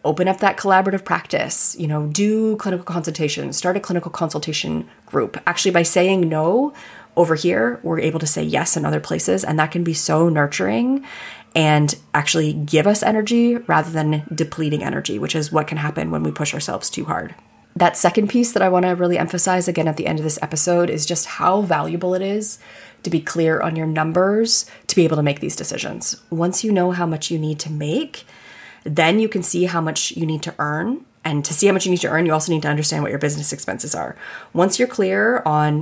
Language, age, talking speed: English, 30-49, 220 wpm